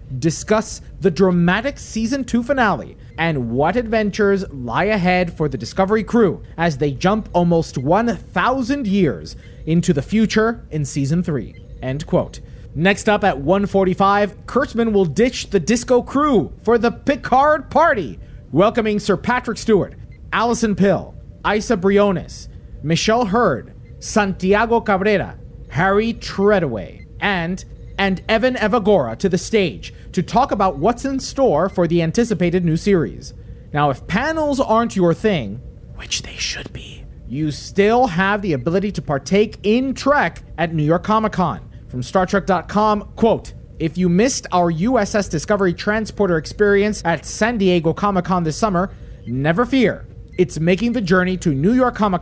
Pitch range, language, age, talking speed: 165-220 Hz, English, 30-49, 145 wpm